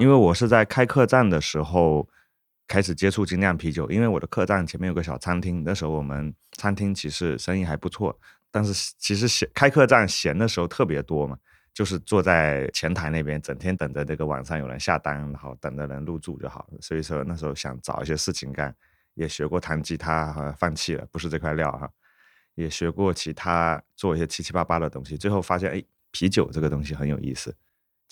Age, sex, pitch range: 30-49, male, 75-100 Hz